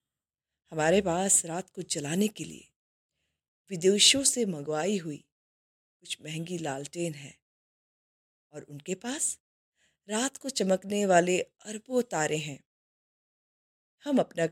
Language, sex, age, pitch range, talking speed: Hindi, female, 20-39, 150-225 Hz, 110 wpm